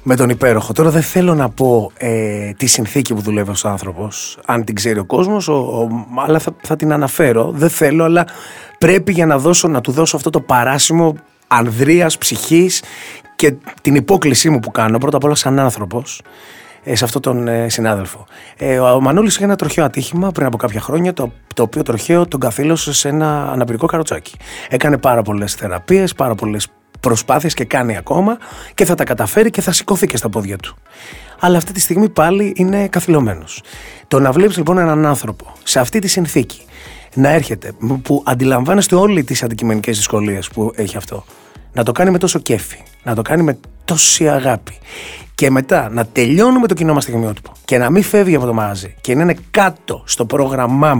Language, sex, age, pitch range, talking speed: Greek, male, 30-49, 115-165 Hz, 190 wpm